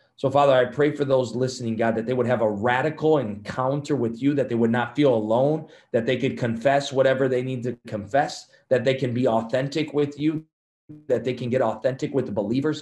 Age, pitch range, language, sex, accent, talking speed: 30-49, 115-140 Hz, English, male, American, 220 wpm